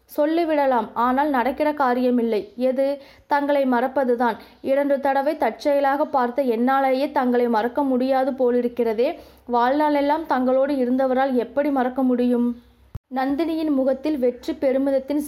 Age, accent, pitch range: 20-39, native, 250-305 Hz